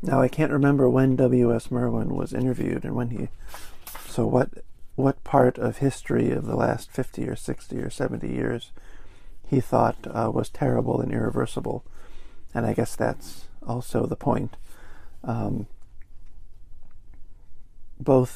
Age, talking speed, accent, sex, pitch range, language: 50-69, 140 wpm, American, male, 110-130 Hz, English